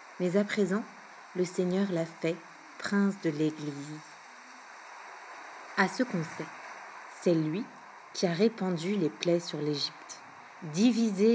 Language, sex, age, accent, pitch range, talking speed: French, female, 50-69, French, 170-210 Hz, 125 wpm